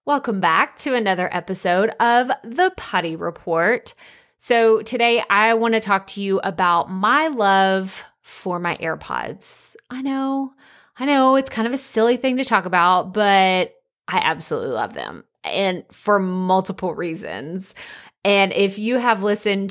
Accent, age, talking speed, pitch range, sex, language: American, 30-49, 150 wpm, 180-235 Hz, female, English